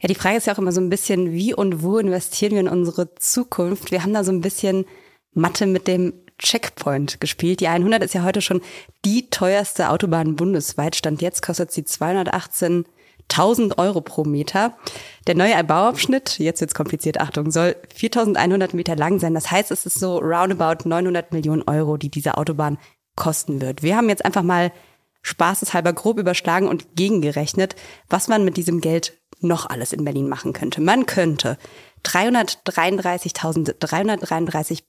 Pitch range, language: 160-200 Hz, German